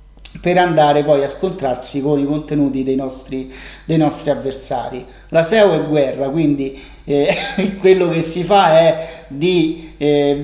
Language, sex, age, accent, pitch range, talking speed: Italian, male, 30-49, native, 145-175 Hz, 150 wpm